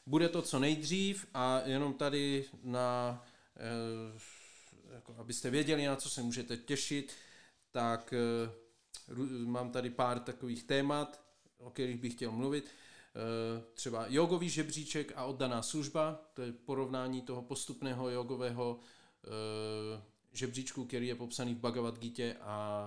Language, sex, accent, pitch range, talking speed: Czech, male, native, 120-135 Hz, 115 wpm